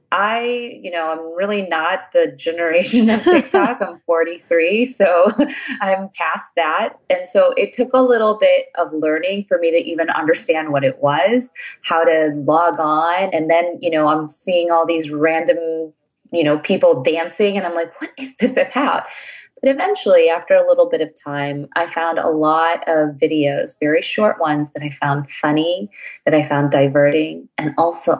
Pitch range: 150-205 Hz